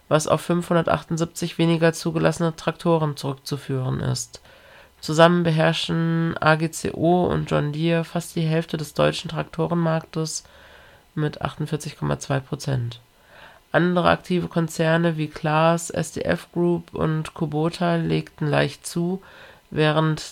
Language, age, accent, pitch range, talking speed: German, 40-59, German, 145-165 Hz, 105 wpm